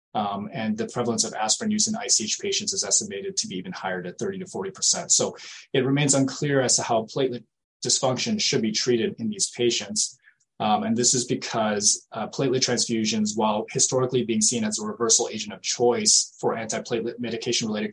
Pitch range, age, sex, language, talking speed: 115-190 Hz, 20-39, male, English, 190 wpm